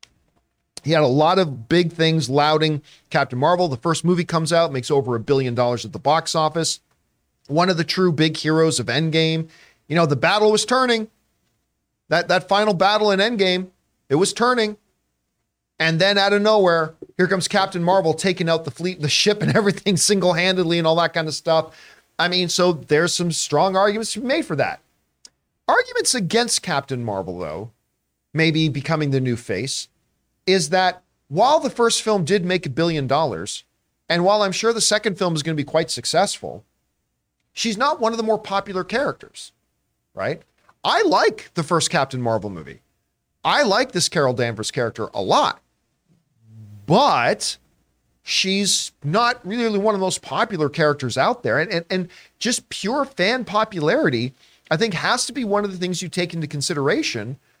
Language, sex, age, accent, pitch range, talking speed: English, male, 40-59, American, 150-200 Hz, 180 wpm